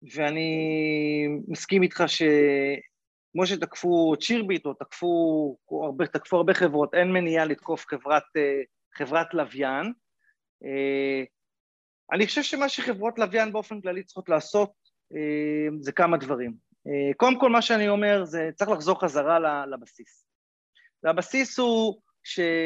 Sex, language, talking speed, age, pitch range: male, Hebrew, 115 wpm, 30-49, 155-210 Hz